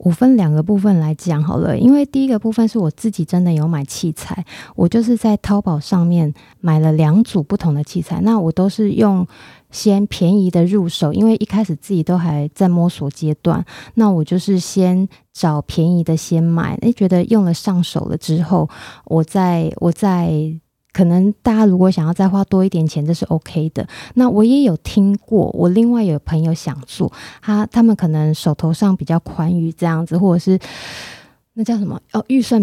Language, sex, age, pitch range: Chinese, female, 20-39, 165-210 Hz